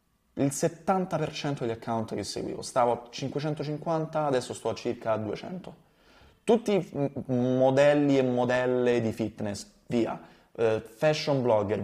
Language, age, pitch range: Italian, 20-39, 110-155 Hz